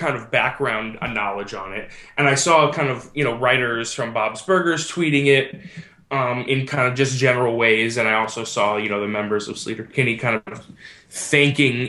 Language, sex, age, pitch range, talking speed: English, male, 20-39, 115-145 Hz, 200 wpm